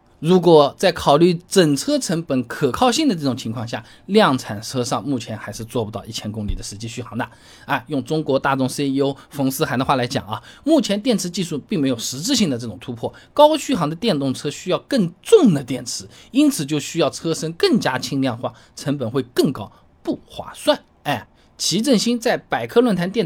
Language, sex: Chinese, male